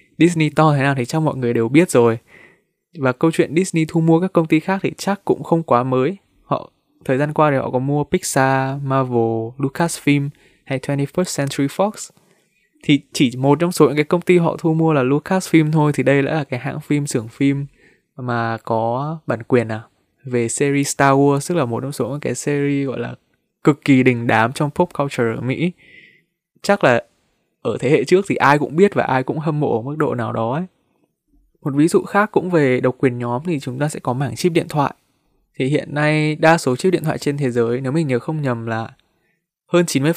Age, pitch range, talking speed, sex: 20-39, 130-165 Hz, 225 wpm, male